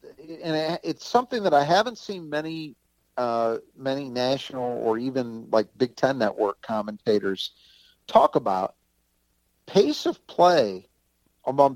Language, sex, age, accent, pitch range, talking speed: English, male, 50-69, American, 115-155 Hz, 120 wpm